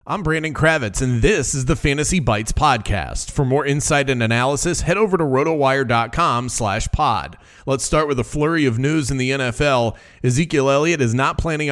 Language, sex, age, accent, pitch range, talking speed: English, male, 30-49, American, 125-150 Hz, 180 wpm